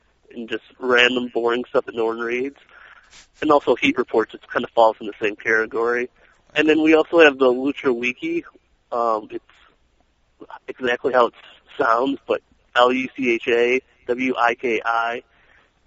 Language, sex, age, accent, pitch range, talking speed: English, male, 30-49, American, 115-140 Hz, 145 wpm